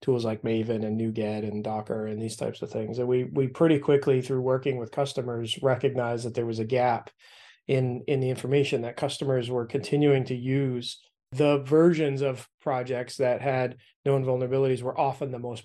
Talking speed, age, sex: 190 wpm, 20-39, male